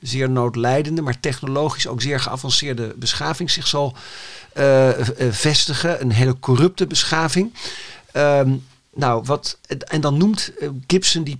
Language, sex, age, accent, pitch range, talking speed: Dutch, male, 50-69, Dutch, 130-175 Hz, 125 wpm